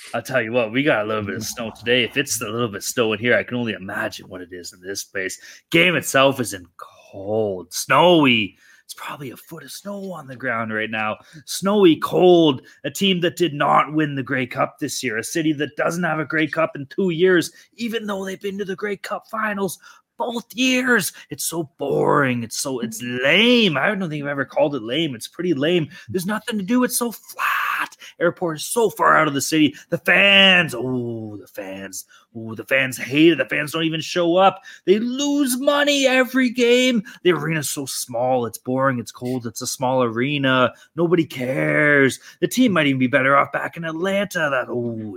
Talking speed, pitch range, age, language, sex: 215 wpm, 130-205 Hz, 30-49, English, male